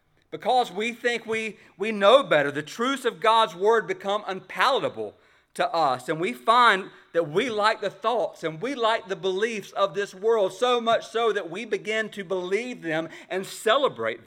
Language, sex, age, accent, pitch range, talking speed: English, male, 40-59, American, 165-230 Hz, 180 wpm